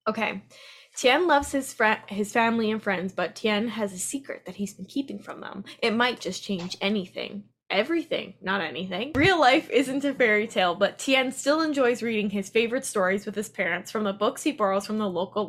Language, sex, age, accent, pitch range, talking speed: English, female, 10-29, American, 195-250 Hz, 205 wpm